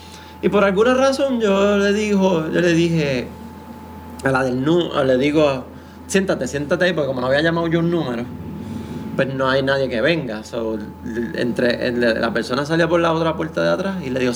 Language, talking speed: Spanish, 200 wpm